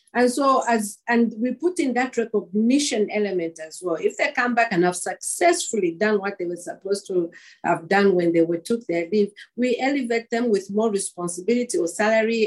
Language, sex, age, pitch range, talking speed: English, female, 50-69, 185-250 Hz, 195 wpm